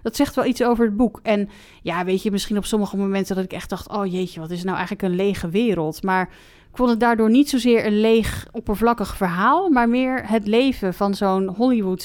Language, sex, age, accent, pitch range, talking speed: Dutch, female, 30-49, Dutch, 185-220 Hz, 230 wpm